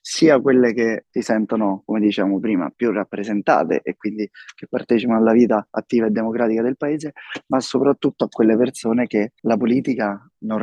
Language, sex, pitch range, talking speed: Italian, male, 110-125 Hz, 175 wpm